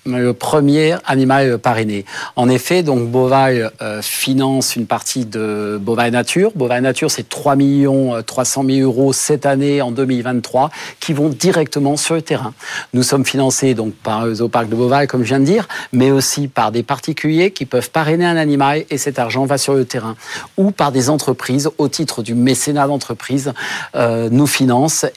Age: 50-69